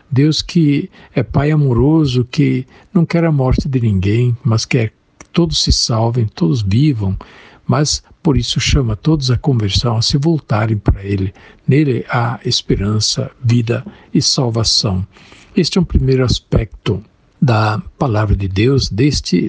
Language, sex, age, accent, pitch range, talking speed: Portuguese, male, 60-79, Brazilian, 105-140 Hz, 150 wpm